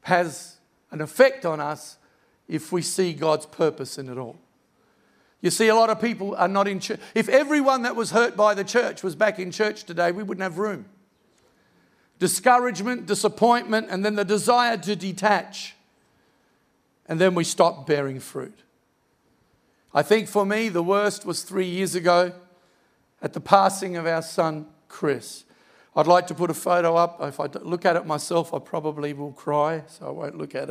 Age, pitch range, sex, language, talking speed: 50-69, 165-210 Hz, male, English, 180 wpm